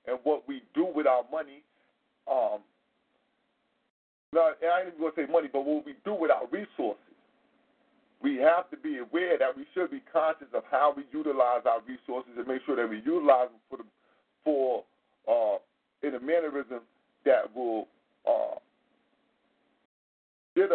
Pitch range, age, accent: 135-190 Hz, 40-59, American